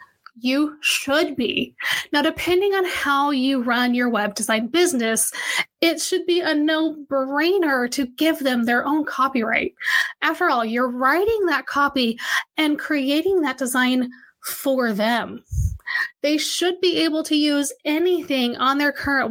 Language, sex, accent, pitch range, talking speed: English, female, American, 250-325 Hz, 145 wpm